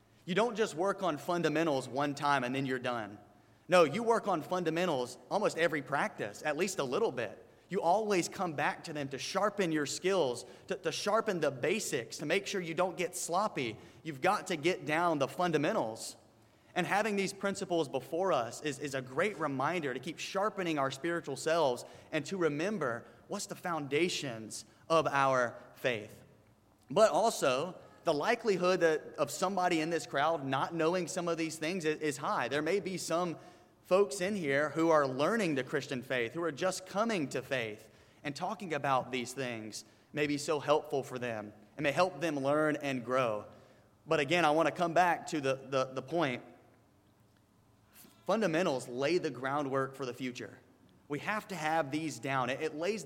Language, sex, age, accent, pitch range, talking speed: English, male, 30-49, American, 130-180 Hz, 185 wpm